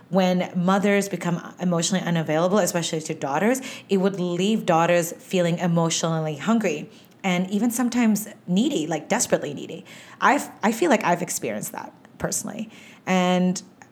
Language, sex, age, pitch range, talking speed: English, female, 30-49, 175-215 Hz, 135 wpm